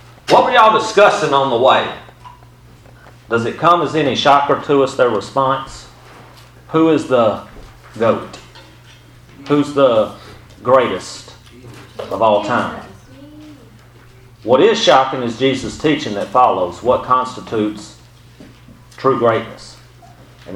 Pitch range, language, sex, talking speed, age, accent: 105-125 Hz, English, male, 115 wpm, 40-59, American